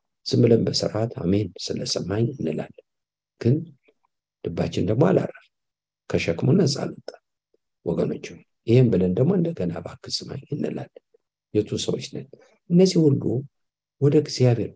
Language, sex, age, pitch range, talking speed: English, male, 50-69, 100-135 Hz, 105 wpm